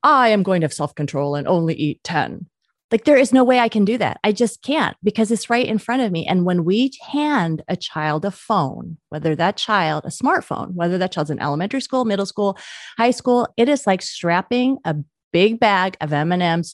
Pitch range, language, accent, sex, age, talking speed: 170-225 Hz, English, American, female, 30-49, 220 wpm